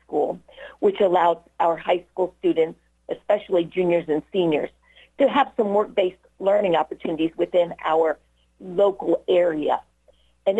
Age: 50-69